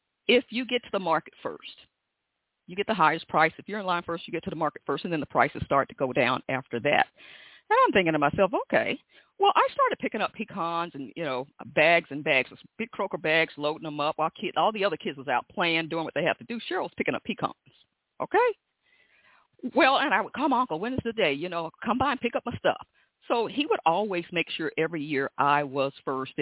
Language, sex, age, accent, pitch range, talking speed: English, female, 40-59, American, 145-225 Hz, 245 wpm